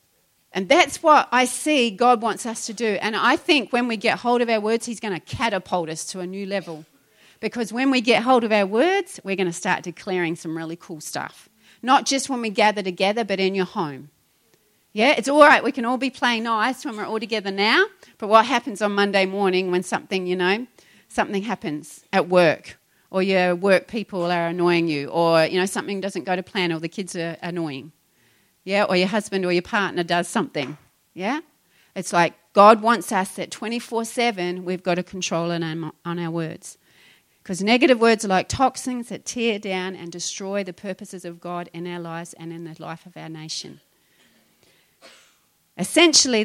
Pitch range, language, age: 175-225 Hz, English, 40-59